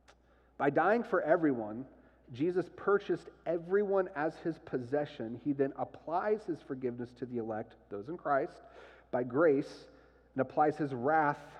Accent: American